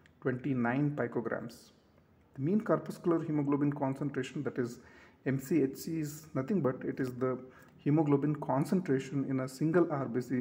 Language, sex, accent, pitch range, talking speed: English, male, Indian, 120-150 Hz, 125 wpm